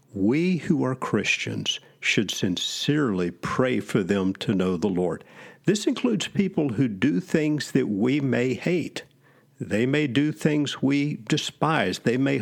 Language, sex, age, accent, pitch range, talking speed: English, male, 50-69, American, 105-150 Hz, 150 wpm